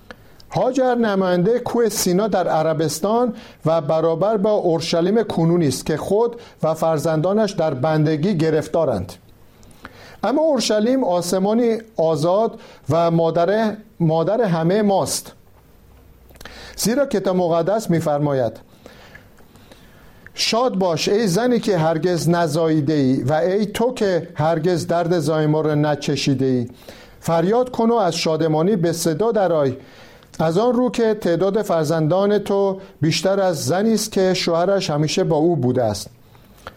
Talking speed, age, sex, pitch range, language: 120 wpm, 50-69, male, 155-210 Hz, Persian